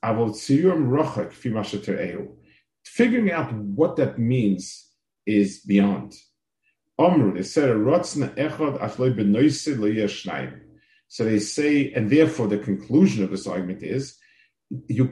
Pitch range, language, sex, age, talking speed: 105-140 Hz, English, male, 50-69, 75 wpm